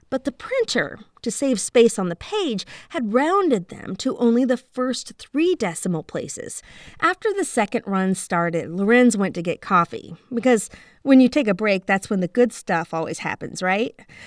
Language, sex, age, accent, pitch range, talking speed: English, female, 30-49, American, 195-275 Hz, 180 wpm